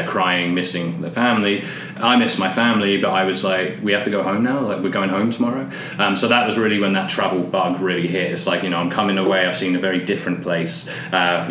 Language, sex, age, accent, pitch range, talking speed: English, male, 20-39, British, 95-105 Hz, 250 wpm